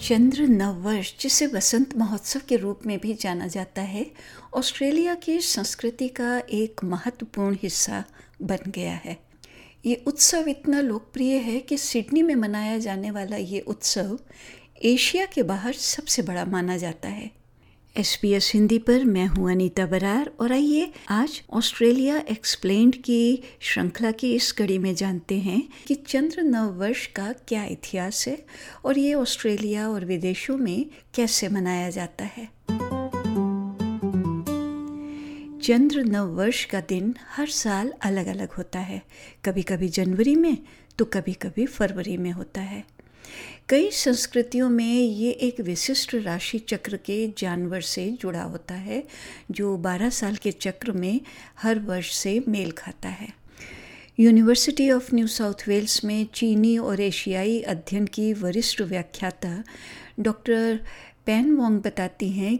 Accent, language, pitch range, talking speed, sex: native, Hindi, 195-250 Hz, 145 wpm, female